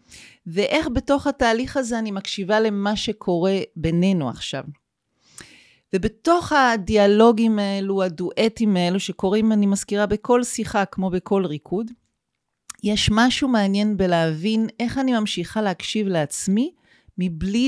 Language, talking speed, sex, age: Hebrew, 110 wpm, female, 40-59